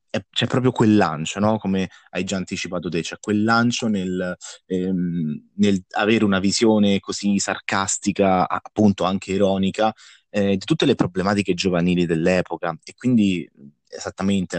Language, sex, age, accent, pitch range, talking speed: Italian, male, 20-39, native, 90-115 Hz, 130 wpm